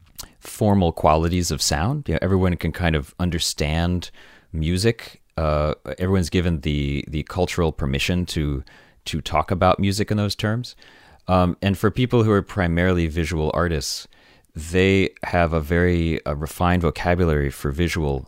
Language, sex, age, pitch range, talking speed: English, male, 30-49, 75-95 Hz, 150 wpm